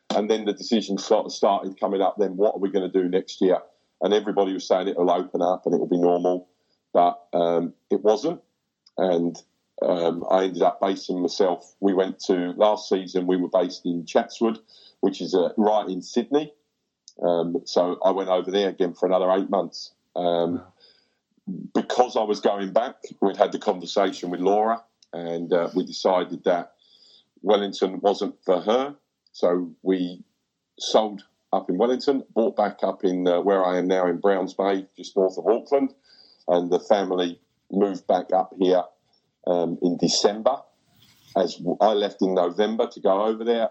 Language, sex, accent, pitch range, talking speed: English, male, British, 90-105 Hz, 180 wpm